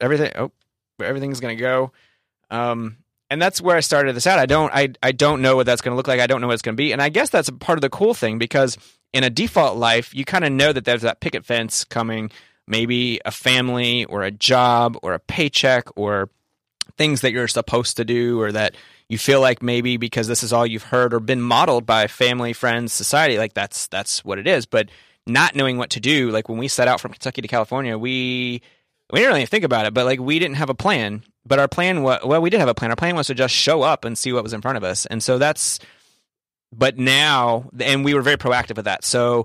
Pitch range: 115-135 Hz